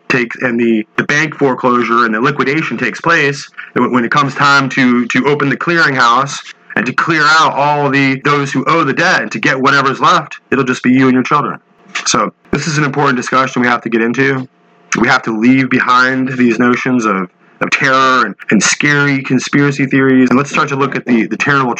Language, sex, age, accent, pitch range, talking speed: English, male, 30-49, American, 120-140 Hz, 215 wpm